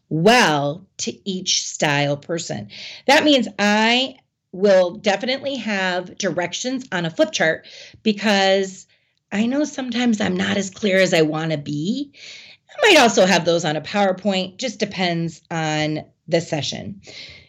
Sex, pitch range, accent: female, 175-230 Hz, American